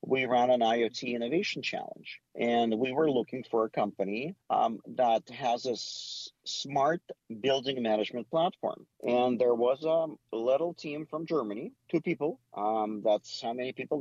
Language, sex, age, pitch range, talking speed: English, male, 50-69, 110-150 Hz, 155 wpm